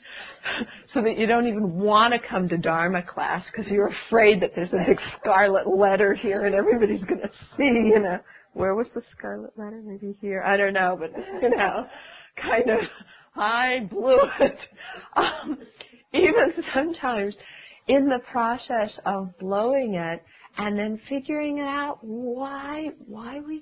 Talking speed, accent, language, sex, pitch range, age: 160 wpm, American, English, female, 190-260 Hz, 50-69